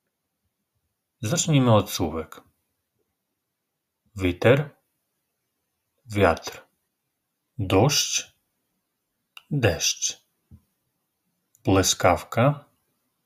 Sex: male